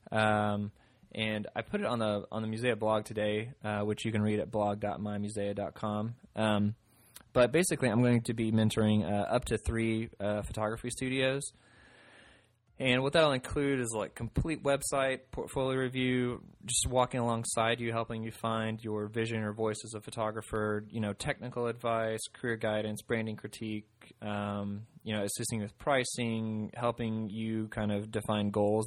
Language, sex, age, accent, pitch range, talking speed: English, male, 20-39, American, 105-120 Hz, 160 wpm